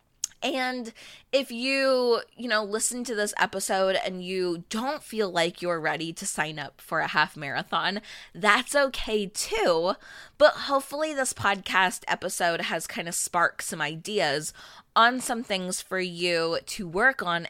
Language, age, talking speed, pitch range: English, 20-39, 155 wpm, 170-215 Hz